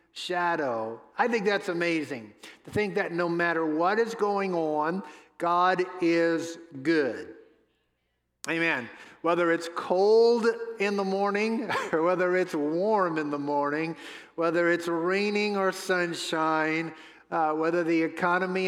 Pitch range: 160-195 Hz